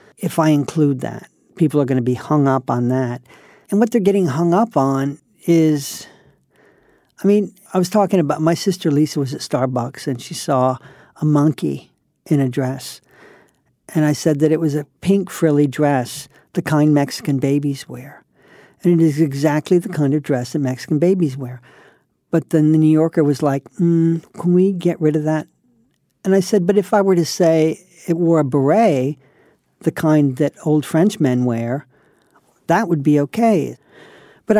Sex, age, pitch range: male, 50-69, 140-175 Hz